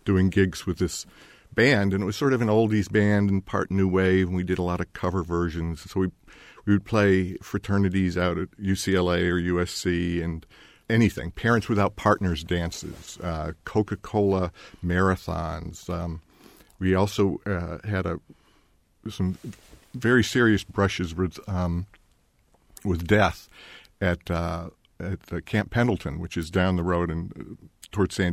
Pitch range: 90-105 Hz